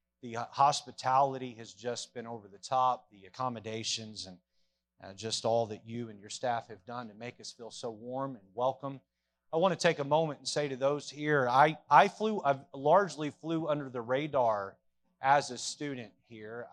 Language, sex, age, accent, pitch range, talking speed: English, male, 30-49, American, 125-160 Hz, 190 wpm